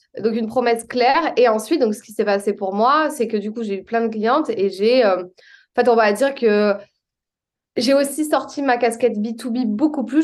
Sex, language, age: female, French, 20-39